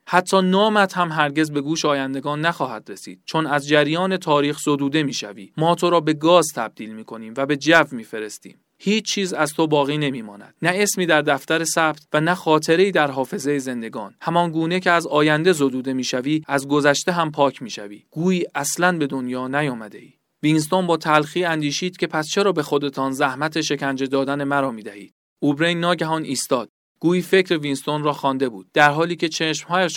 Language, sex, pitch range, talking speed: Persian, male, 140-170 Hz, 180 wpm